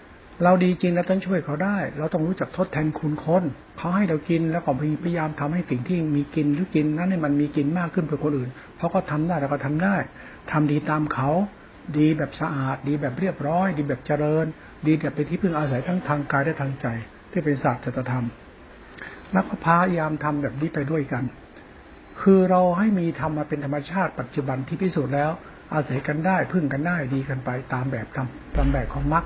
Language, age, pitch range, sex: Thai, 60-79, 140-165 Hz, male